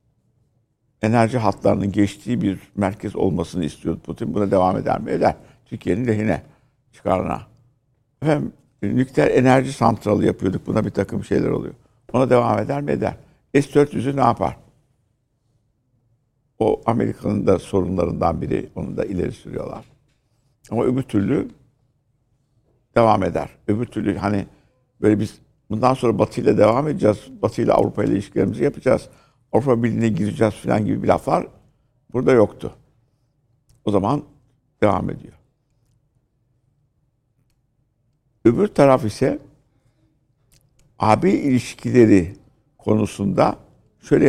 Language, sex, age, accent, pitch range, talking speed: Turkish, male, 60-79, native, 110-135 Hz, 115 wpm